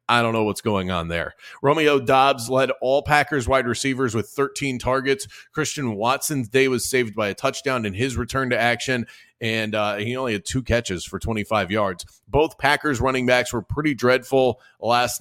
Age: 30-49